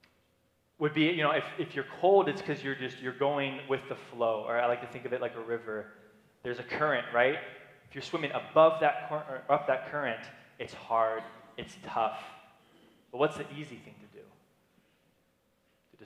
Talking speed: 200 wpm